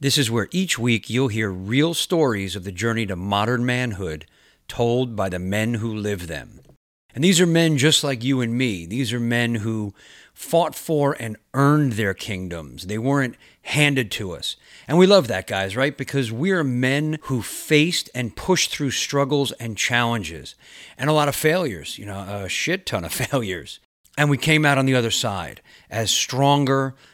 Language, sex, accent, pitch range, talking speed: English, male, American, 110-140 Hz, 190 wpm